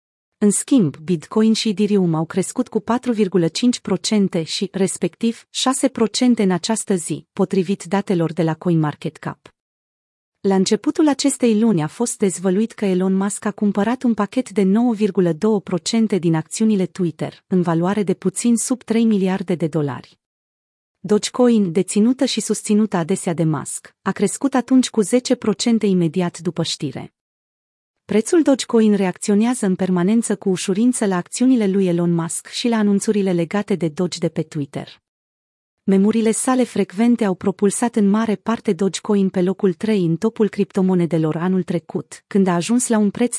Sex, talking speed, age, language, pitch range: female, 150 wpm, 30-49, Romanian, 180-220 Hz